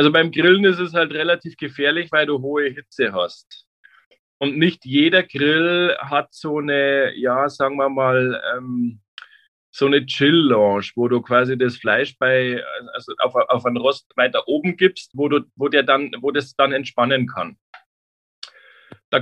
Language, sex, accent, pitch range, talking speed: German, male, German, 125-155 Hz, 165 wpm